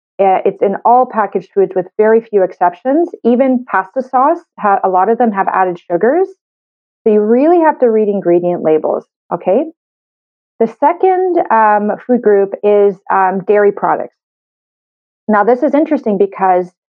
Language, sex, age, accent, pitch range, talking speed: English, female, 30-49, American, 190-245 Hz, 150 wpm